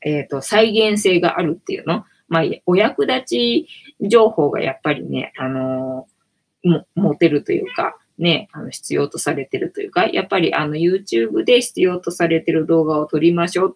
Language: Japanese